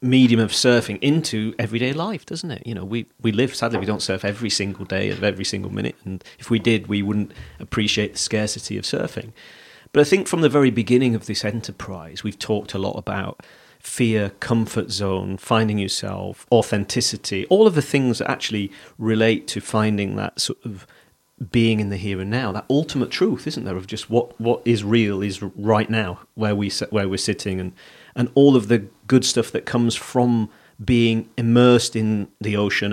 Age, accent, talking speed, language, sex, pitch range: 40-59, British, 195 wpm, English, male, 100-120 Hz